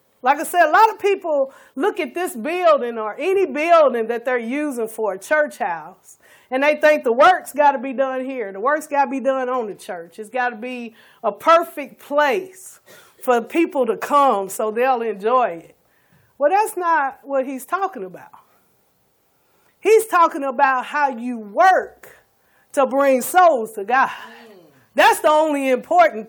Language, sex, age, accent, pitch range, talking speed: English, female, 40-59, American, 245-340 Hz, 175 wpm